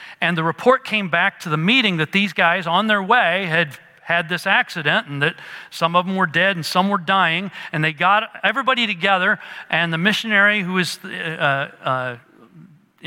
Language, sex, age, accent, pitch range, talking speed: English, male, 40-59, American, 165-225 Hz, 190 wpm